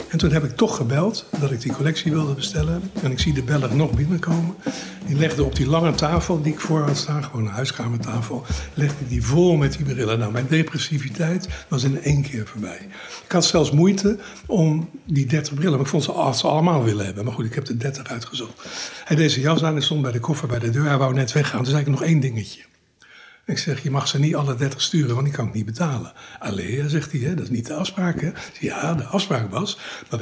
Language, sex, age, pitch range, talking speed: Dutch, male, 60-79, 125-165 Hz, 250 wpm